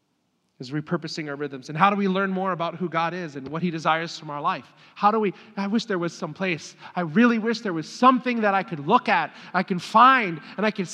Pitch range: 155-205 Hz